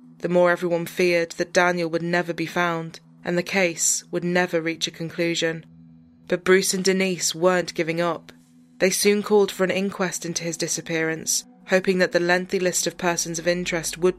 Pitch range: 165-180 Hz